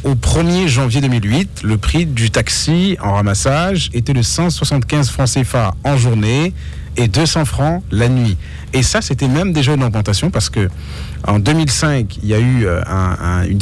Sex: male